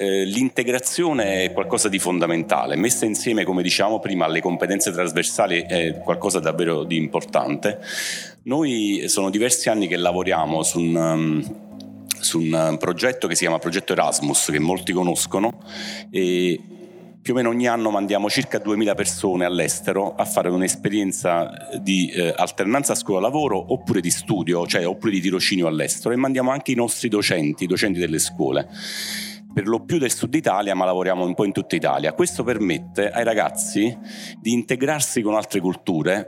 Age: 40-59